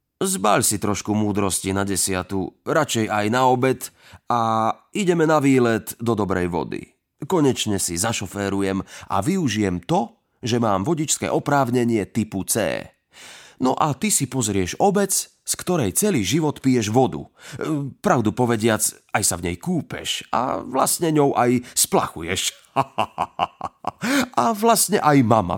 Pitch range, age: 100-150 Hz, 30-49